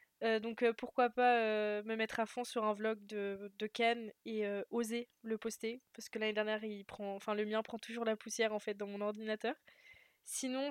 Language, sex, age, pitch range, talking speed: French, female, 20-39, 215-240 Hz, 195 wpm